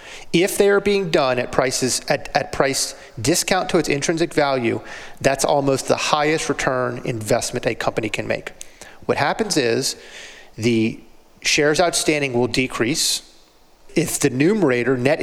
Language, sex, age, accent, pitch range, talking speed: English, male, 40-59, American, 130-155 Hz, 145 wpm